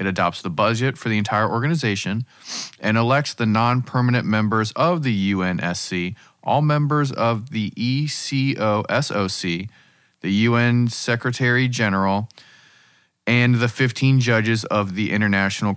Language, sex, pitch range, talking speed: English, male, 95-115 Hz, 120 wpm